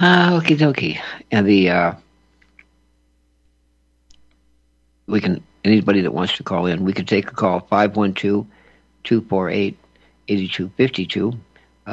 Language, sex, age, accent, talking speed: English, male, 60-79, American, 150 wpm